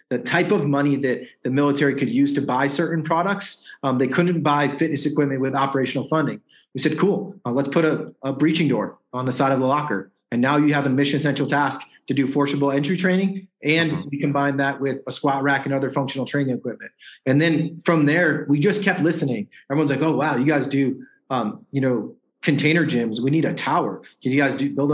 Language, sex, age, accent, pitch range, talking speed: English, male, 30-49, American, 135-165 Hz, 225 wpm